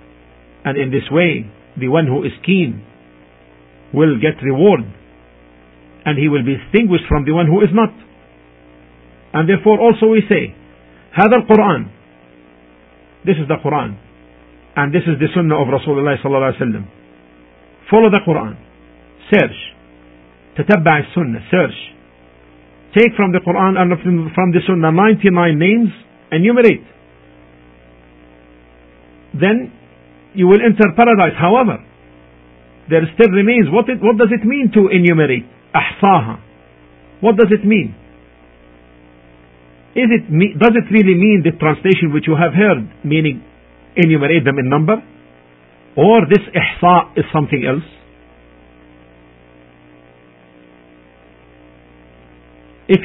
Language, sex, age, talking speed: English, male, 50-69, 120 wpm